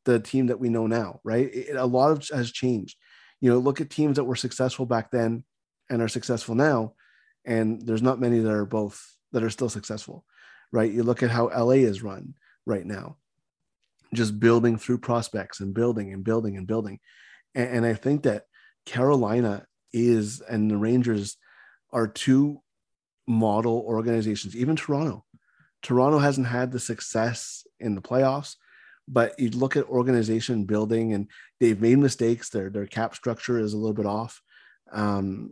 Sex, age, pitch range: male, 30-49, 110-130 Hz